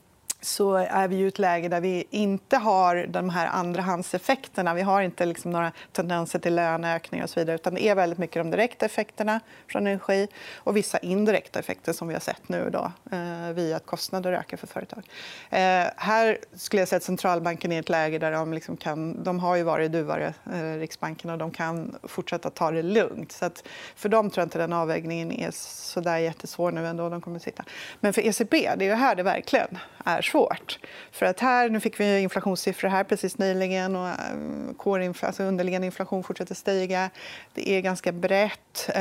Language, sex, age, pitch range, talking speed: Swedish, female, 30-49, 175-195 Hz, 195 wpm